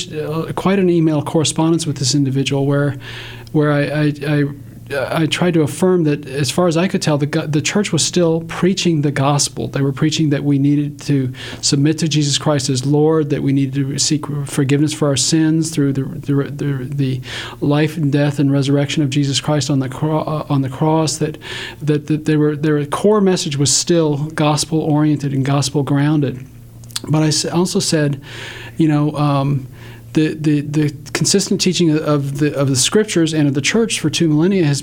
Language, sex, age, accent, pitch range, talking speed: English, male, 40-59, American, 140-160 Hz, 190 wpm